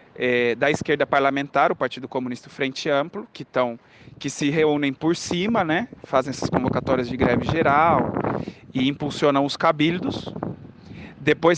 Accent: Brazilian